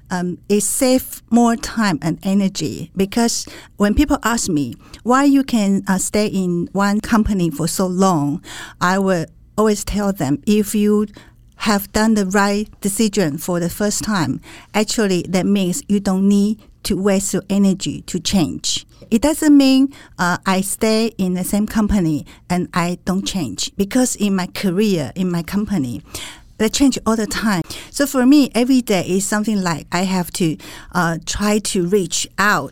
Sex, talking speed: female, 170 wpm